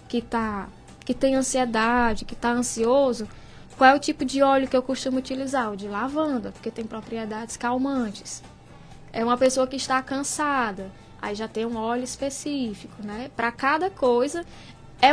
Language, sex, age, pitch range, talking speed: Portuguese, female, 10-29, 240-285 Hz, 165 wpm